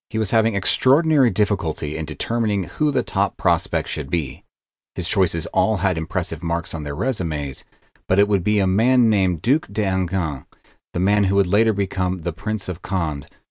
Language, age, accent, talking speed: English, 40-59, American, 180 wpm